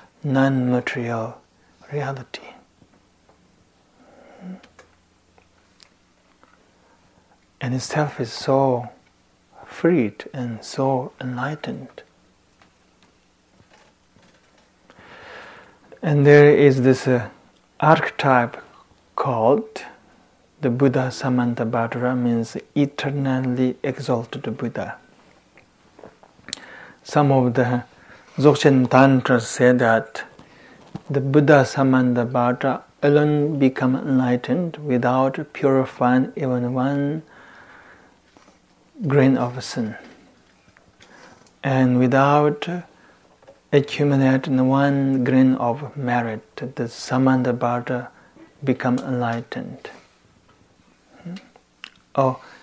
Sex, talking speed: male, 65 wpm